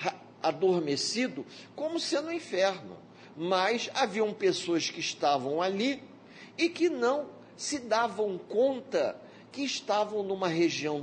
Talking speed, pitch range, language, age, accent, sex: 120 wpm, 145-220 Hz, Portuguese, 50-69, Brazilian, male